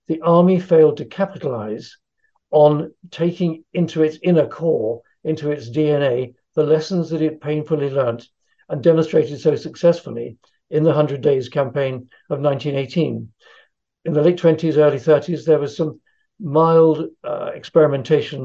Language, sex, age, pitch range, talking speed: English, male, 60-79, 140-165 Hz, 140 wpm